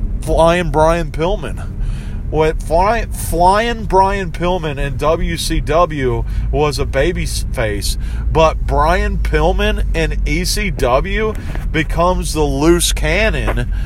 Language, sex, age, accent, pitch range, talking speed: English, male, 40-59, American, 105-165 Hz, 90 wpm